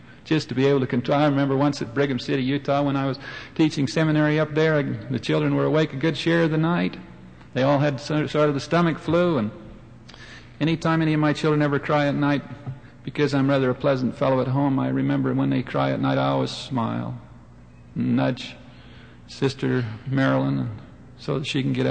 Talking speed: 210 wpm